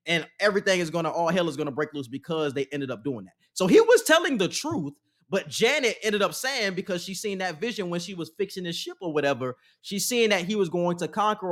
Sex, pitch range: male, 145-200 Hz